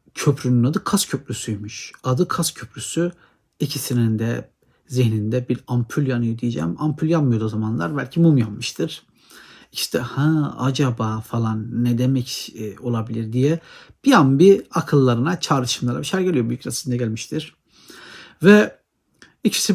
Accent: native